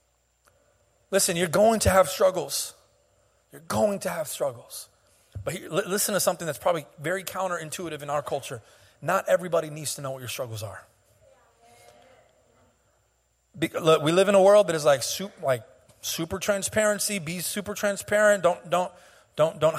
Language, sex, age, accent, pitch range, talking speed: English, male, 30-49, American, 175-240 Hz, 145 wpm